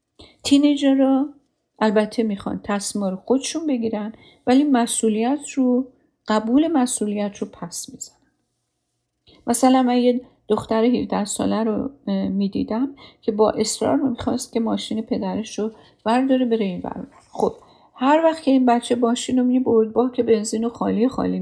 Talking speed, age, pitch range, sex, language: 140 wpm, 50-69, 205-250 Hz, female, Persian